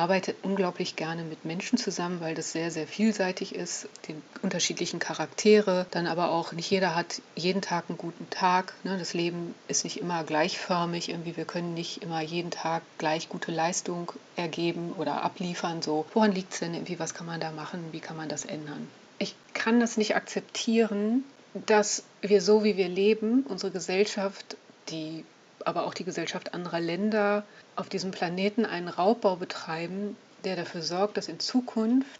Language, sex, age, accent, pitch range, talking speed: German, female, 40-59, German, 170-205 Hz, 175 wpm